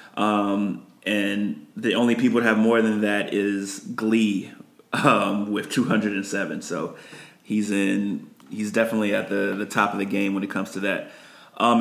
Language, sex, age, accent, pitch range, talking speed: English, male, 30-49, American, 105-125 Hz, 170 wpm